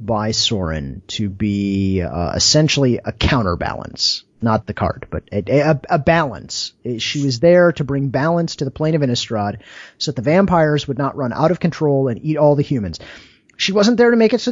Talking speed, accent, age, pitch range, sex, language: 200 wpm, American, 30-49, 130-175 Hz, male, English